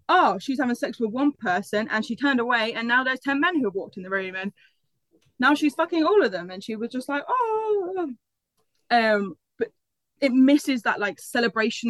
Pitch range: 215-275 Hz